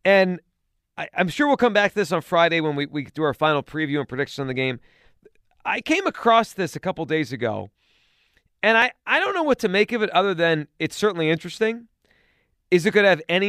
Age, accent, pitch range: 30-49, American, 135-210 Hz